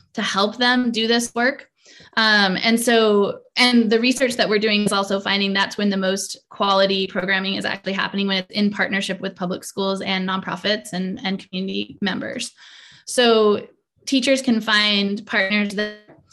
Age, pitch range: 10-29, 195-230 Hz